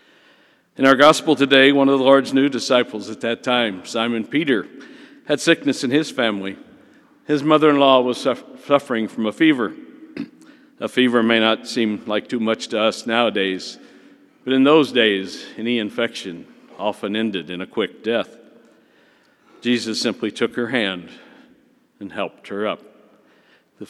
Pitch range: 110-145 Hz